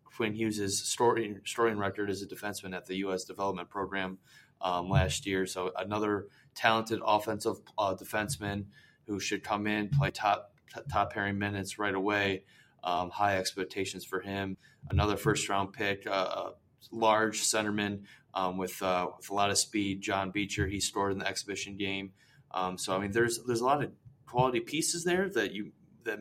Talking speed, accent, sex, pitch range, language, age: 175 wpm, American, male, 95-110 Hz, English, 20-39